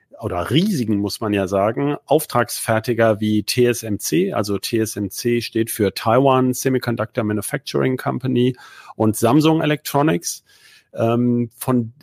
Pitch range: 110-135 Hz